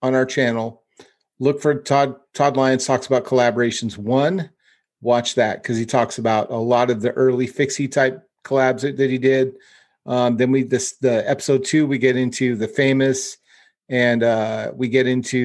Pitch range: 120-140 Hz